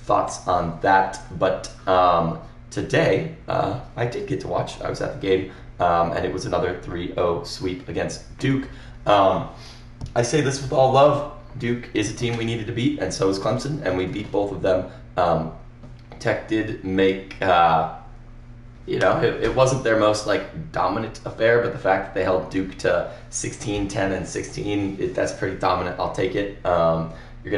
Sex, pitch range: male, 90-120 Hz